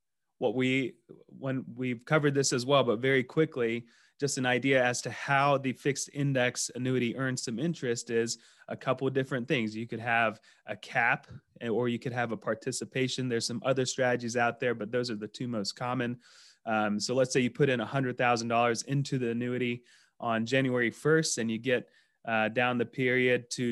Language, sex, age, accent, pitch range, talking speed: English, male, 30-49, American, 115-135 Hz, 195 wpm